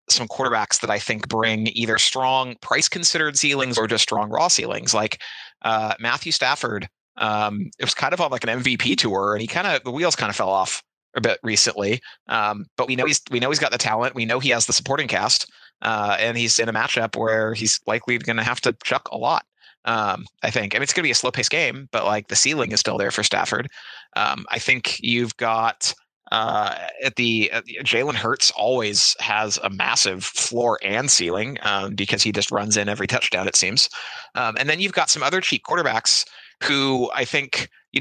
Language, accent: English, American